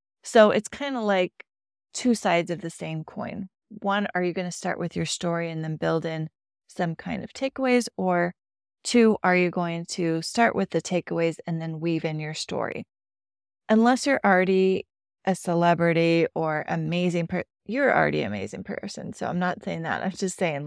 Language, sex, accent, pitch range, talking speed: English, female, American, 170-220 Hz, 190 wpm